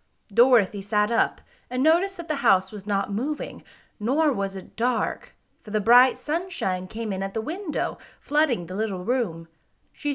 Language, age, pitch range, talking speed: English, 30-49, 200-270 Hz, 170 wpm